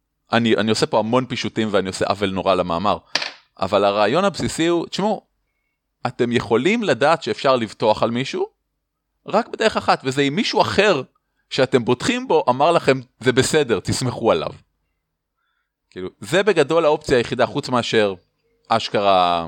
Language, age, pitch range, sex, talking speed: Hebrew, 30-49, 105-160 Hz, male, 145 wpm